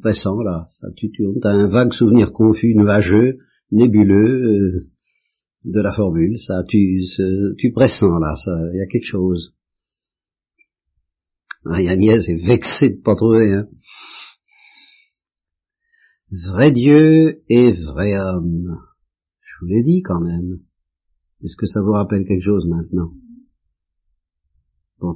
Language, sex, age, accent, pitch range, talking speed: French, male, 50-69, French, 85-120 Hz, 130 wpm